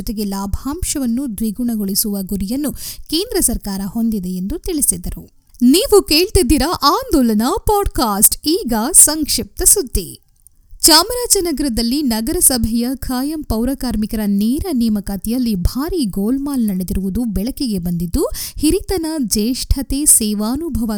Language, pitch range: Kannada, 215-280 Hz